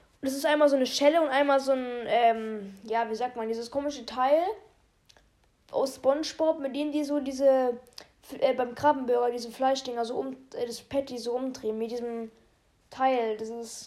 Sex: female